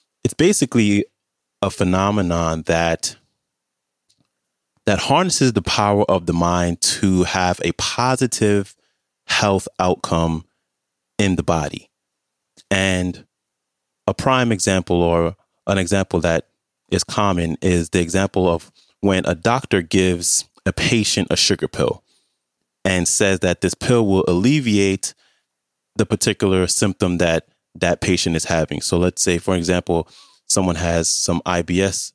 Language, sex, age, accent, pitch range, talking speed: English, male, 30-49, American, 85-100 Hz, 125 wpm